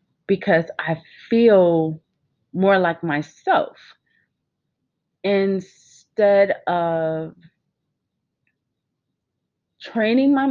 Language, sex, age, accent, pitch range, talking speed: English, female, 30-49, American, 160-205 Hz, 55 wpm